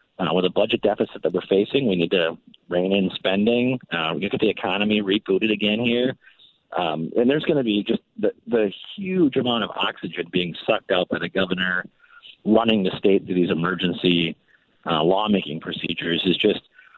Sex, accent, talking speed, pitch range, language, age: male, American, 185 wpm, 95-125 Hz, English, 40-59